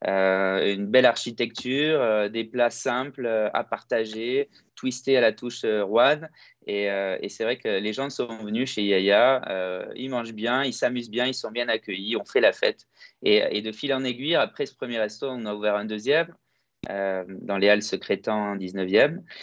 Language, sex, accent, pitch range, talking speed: French, male, French, 105-130 Hz, 200 wpm